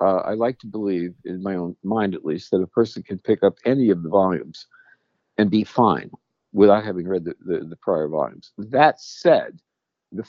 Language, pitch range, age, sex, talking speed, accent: English, 90-115 Hz, 50-69, male, 205 wpm, American